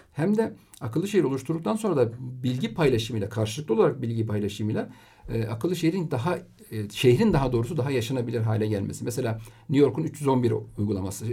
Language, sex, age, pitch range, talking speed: Turkish, male, 50-69, 110-145 Hz, 160 wpm